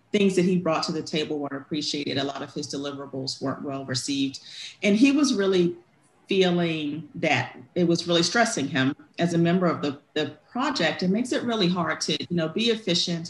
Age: 40-59